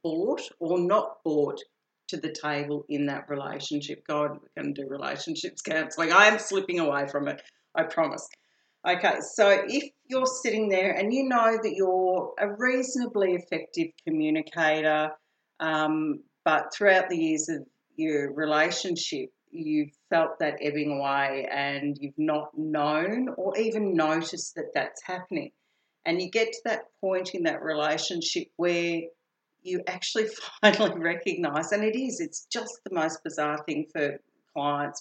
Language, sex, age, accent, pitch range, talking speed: English, female, 40-59, Australian, 150-205 Hz, 155 wpm